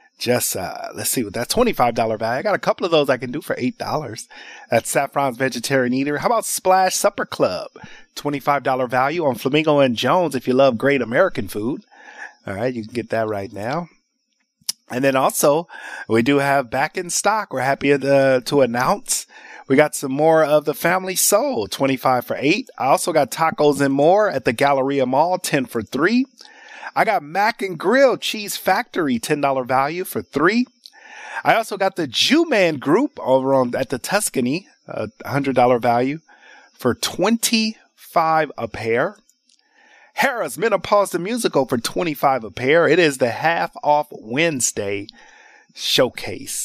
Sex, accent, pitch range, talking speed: male, American, 130-205 Hz, 165 wpm